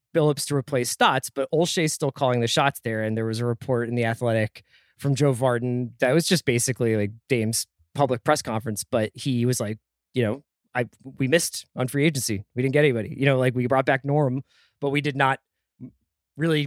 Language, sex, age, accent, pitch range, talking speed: English, male, 20-39, American, 120-150 Hz, 210 wpm